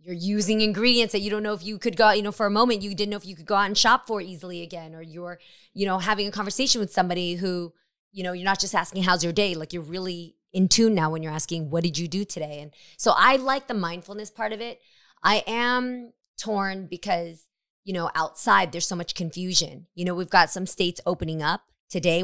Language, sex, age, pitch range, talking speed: English, female, 20-39, 170-210 Hz, 250 wpm